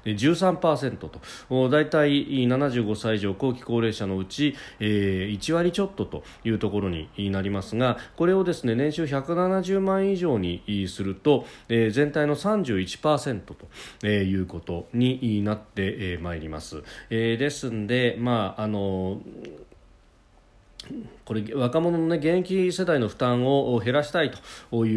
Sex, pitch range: male, 100-145 Hz